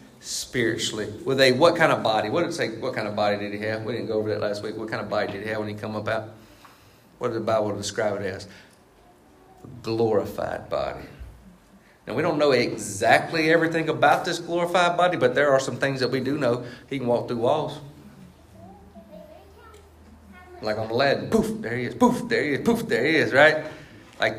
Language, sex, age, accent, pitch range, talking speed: English, male, 40-59, American, 115-145 Hz, 215 wpm